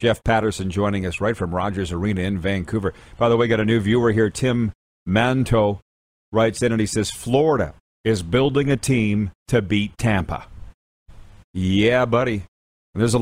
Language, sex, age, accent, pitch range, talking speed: English, male, 40-59, American, 95-120 Hz, 175 wpm